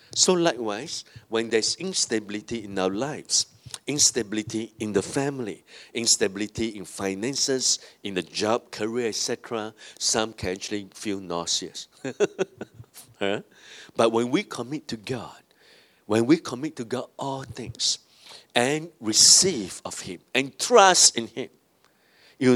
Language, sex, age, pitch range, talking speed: English, male, 60-79, 110-155 Hz, 125 wpm